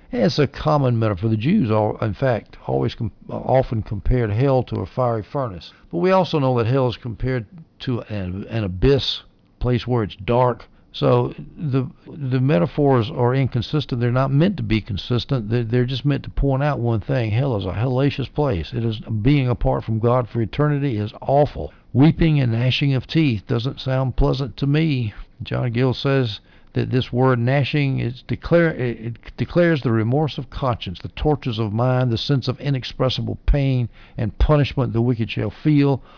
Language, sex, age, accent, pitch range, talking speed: English, male, 60-79, American, 110-135 Hz, 175 wpm